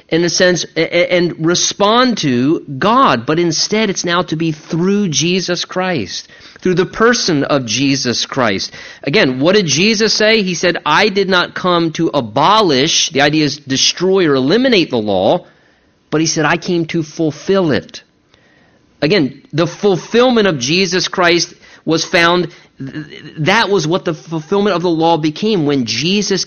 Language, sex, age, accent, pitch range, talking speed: English, male, 40-59, American, 160-230 Hz, 160 wpm